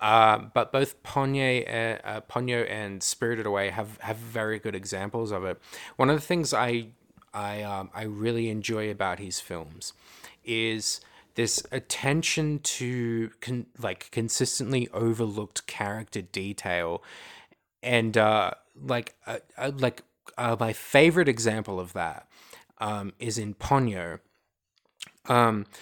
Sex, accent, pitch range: male, Australian, 100-120 Hz